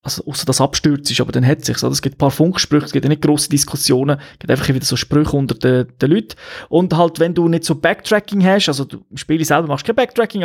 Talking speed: 265 wpm